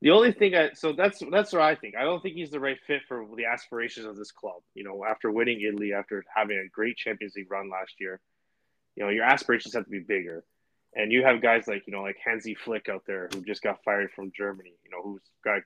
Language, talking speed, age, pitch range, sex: English, 255 wpm, 20-39, 105-130 Hz, male